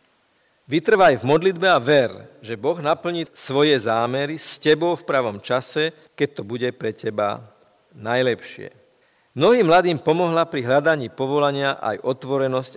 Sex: male